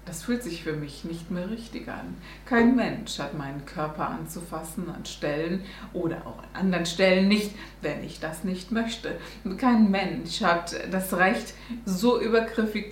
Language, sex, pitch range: German, female, 170-205 Hz